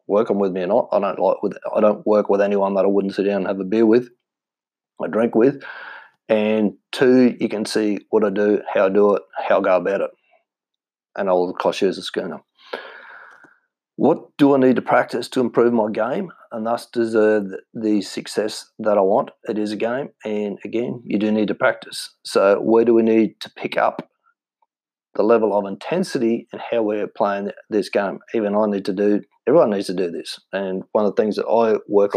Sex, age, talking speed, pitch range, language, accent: male, 40-59, 220 wpm, 100-115 Hz, English, Australian